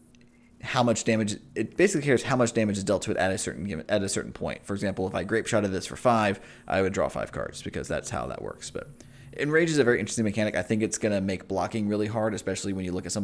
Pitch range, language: 95-115 Hz, English